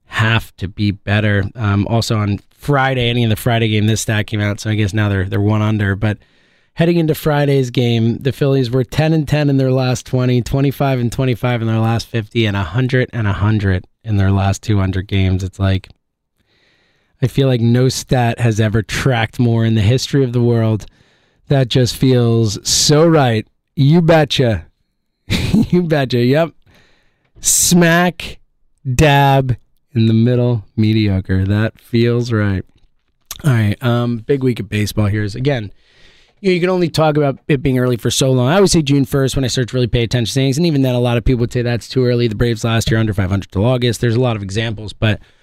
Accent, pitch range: American, 105-135 Hz